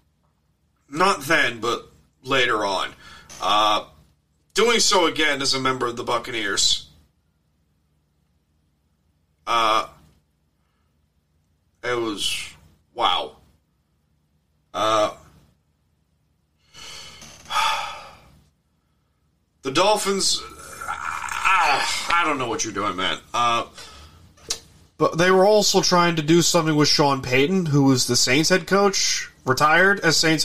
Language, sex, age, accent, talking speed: English, male, 30-49, American, 100 wpm